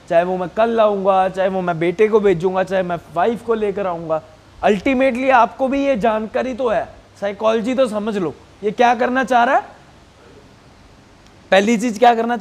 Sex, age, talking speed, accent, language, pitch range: male, 30-49, 185 wpm, native, Hindi, 205-270 Hz